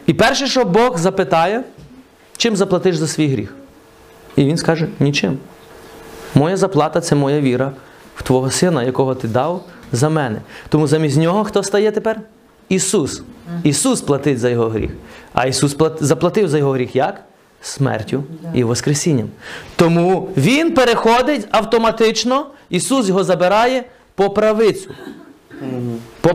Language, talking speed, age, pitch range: Ukrainian, 135 wpm, 30-49, 145-225 Hz